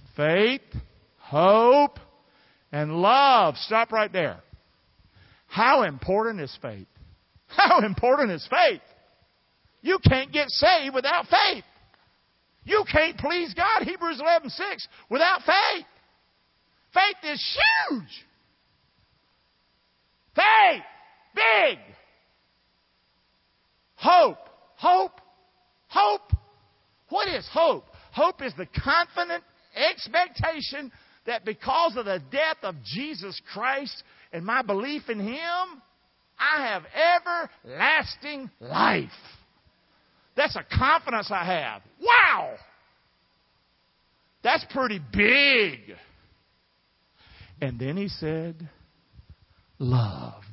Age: 50-69